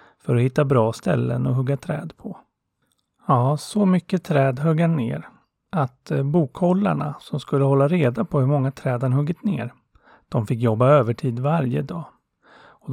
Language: Swedish